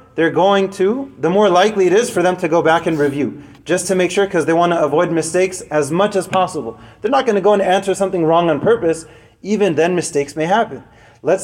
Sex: male